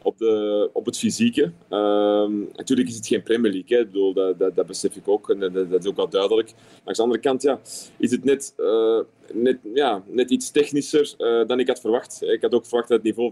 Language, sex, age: Dutch, male, 30-49